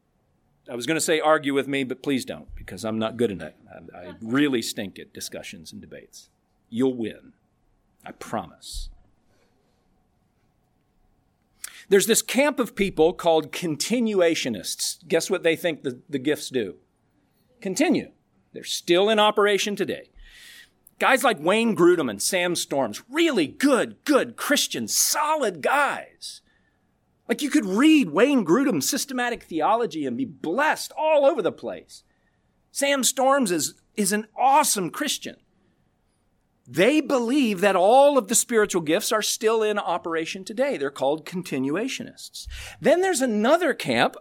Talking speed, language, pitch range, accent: 145 wpm, English, 165-275 Hz, American